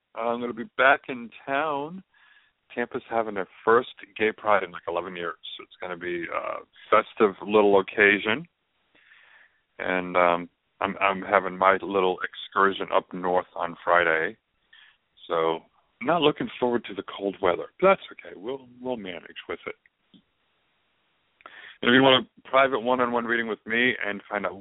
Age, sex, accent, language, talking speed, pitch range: 40-59, male, American, English, 165 wpm, 95-125 Hz